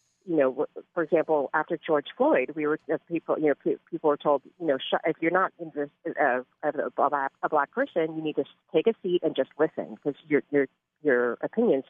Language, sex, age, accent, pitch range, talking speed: English, female, 40-59, American, 145-180 Hz, 215 wpm